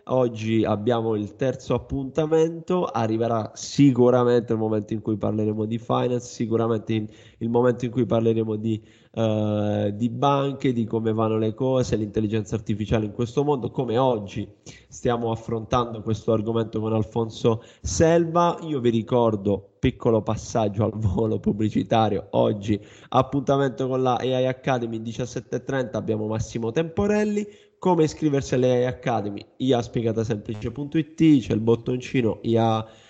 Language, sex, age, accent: Italian, male, 20-39, native